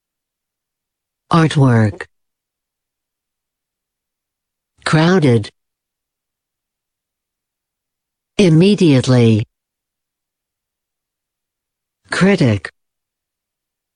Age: 60-79